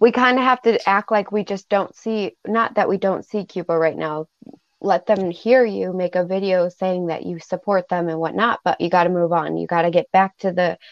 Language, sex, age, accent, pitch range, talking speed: English, female, 20-39, American, 180-225 Hz, 255 wpm